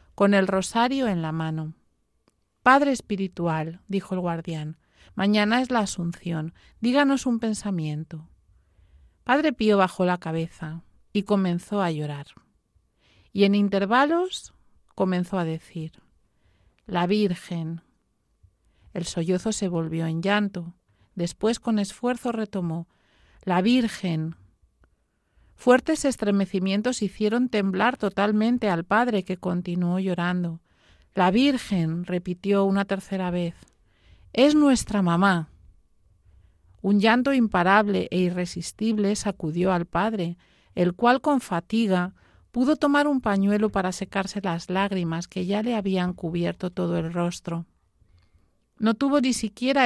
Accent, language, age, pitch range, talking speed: Spanish, Spanish, 40-59, 170-215 Hz, 120 wpm